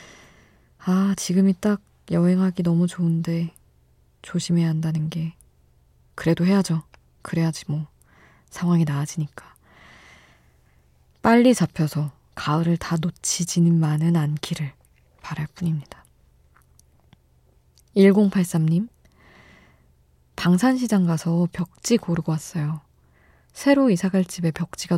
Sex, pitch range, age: female, 140-175 Hz, 20-39